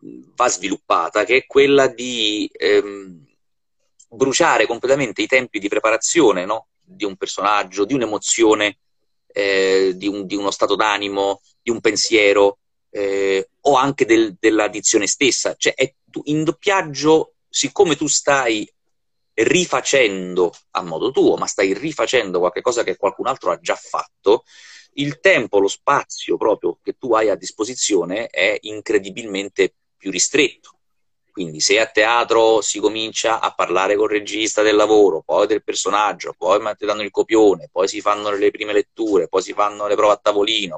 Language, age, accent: Italian, 30-49, native